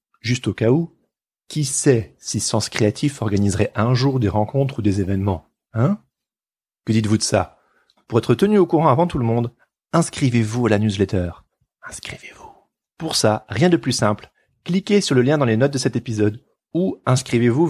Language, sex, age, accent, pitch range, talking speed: French, male, 30-49, French, 110-140 Hz, 185 wpm